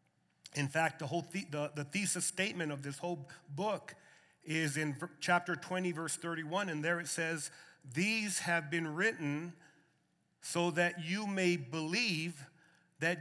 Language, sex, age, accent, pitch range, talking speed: English, male, 40-59, American, 155-185 Hz, 145 wpm